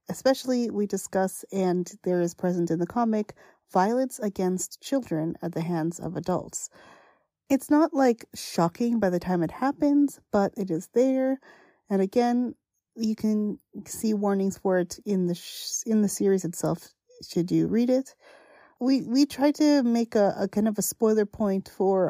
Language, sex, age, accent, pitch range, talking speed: English, female, 30-49, American, 185-245 Hz, 170 wpm